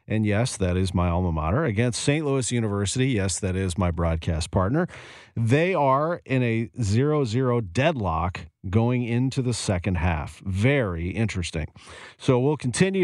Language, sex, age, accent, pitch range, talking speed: English, male, 40-59, American, 100-130 Hz, 150 wpm